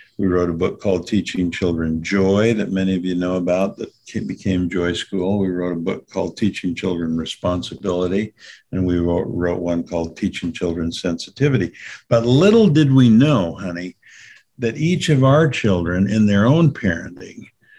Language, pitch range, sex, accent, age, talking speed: English, 90-115 Hz, male, American, 60-79, 165 wpm